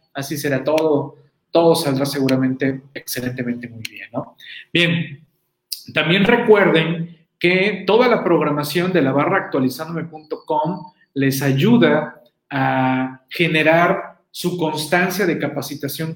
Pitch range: 135-165 Hz